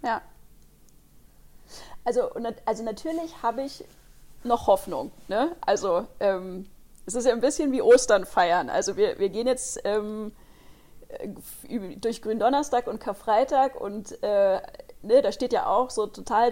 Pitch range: 210-270 Hz